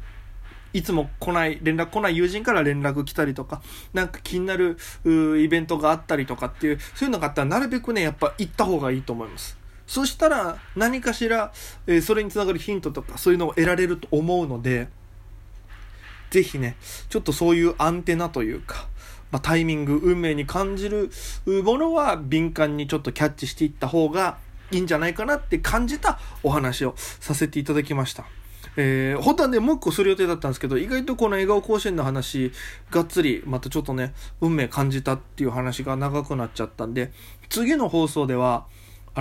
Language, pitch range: Japanese, 130-195 Hz